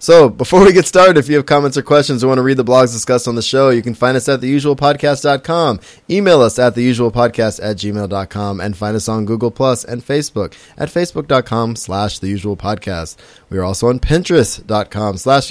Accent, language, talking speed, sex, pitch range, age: American, English, 195 wpm, male, 105-140 Hz, 20-39